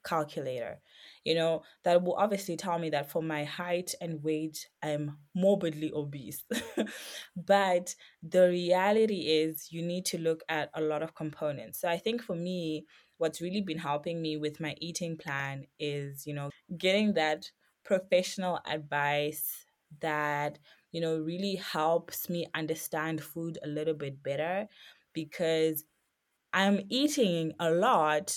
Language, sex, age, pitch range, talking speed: English, female, 20-39, 155-195 Hz, 145 wpm